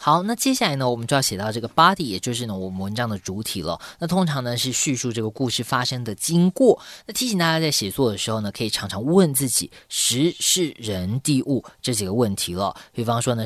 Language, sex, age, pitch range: Chinese, female, 20-39, 105-140 Hz